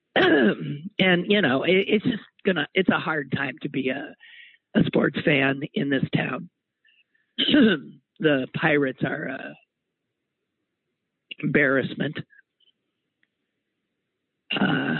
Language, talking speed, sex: English, 100 wpm, male